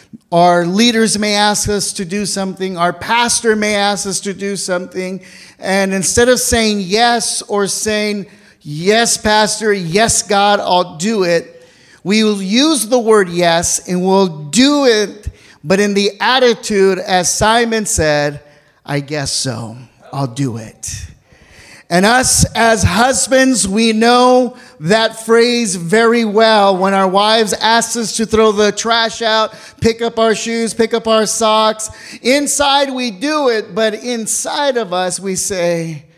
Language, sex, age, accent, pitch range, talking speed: English, male, 40-59, American, 185-230 Hz, 150 wpm